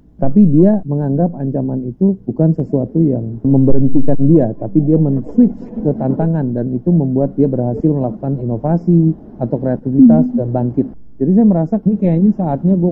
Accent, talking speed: native, 155 wpm